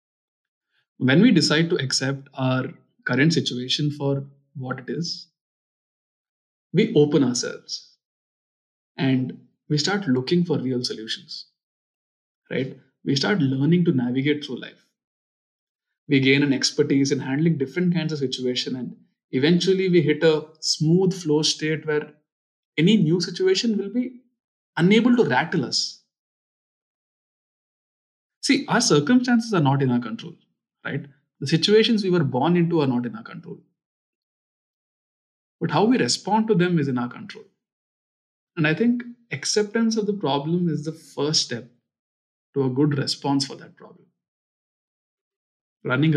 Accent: Indian